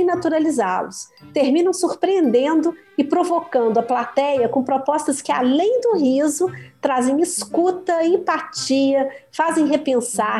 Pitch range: 240-330 Hz